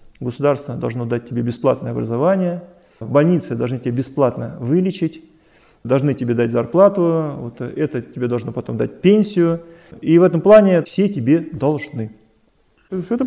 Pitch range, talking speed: 125-175 Hz, 130 wpm